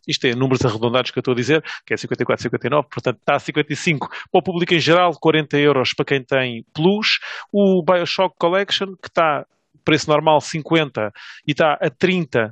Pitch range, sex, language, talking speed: 135-170 Hz, male, English, 185 wpm